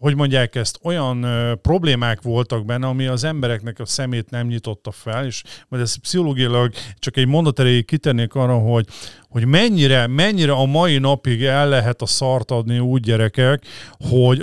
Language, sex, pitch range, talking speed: Hungarian, male, 120-140 Hz, 165 wpm